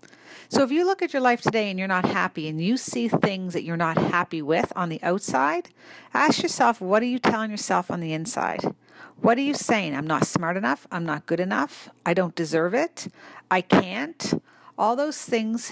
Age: 50-69